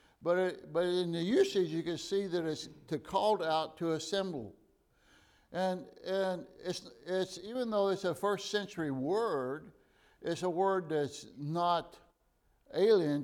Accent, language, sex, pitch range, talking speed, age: American, English, male, 150-185 Hz, 150 wpm, 60-79